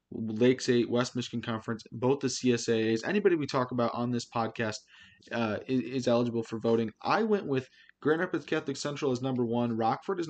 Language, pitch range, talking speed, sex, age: English, 115-145 Hz, 190 wpm, male, 20-39